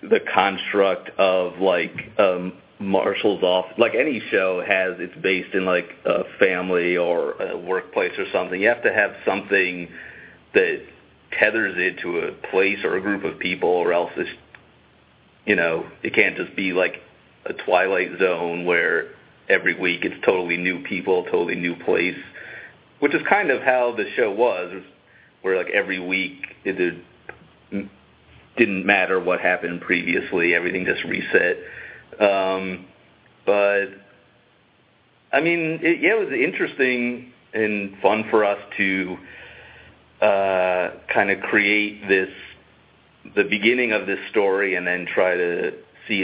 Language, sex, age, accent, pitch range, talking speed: English, male, 40-59, American, 90-115 Hz, 150 wpm